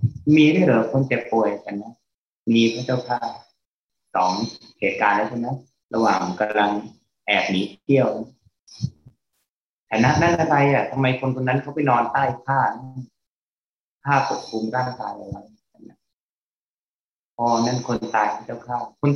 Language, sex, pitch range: Thai, male, 115-135 Hz